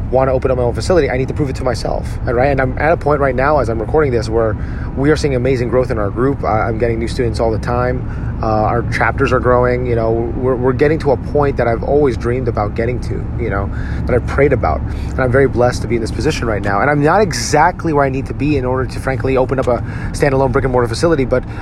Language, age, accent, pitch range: English, 30-49, American, 115-135 Hz